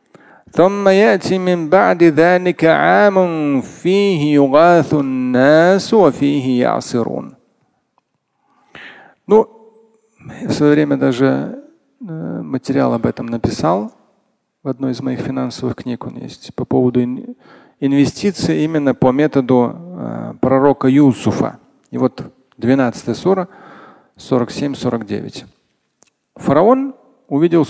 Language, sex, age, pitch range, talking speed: Russian, male, 40-59, 130-190 Hz, 65 wpm